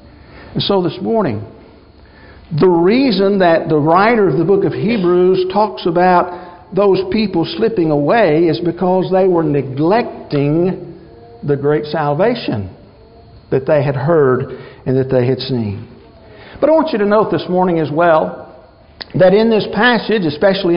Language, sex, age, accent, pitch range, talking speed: English, male, 60-79, American, 160-215 Hz, 150 wpm